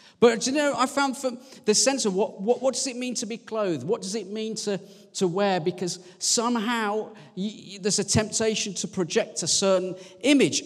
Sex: male